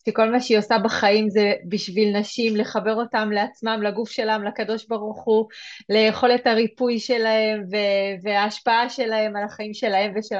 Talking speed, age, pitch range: 150 wpm, 30-49, 200-250 Hz